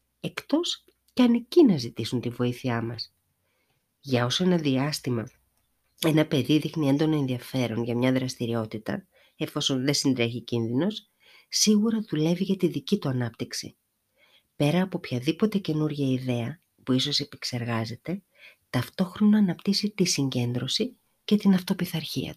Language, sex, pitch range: Greek, female, 130-200 Hz